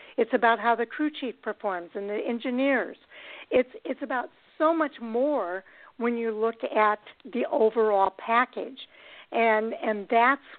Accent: American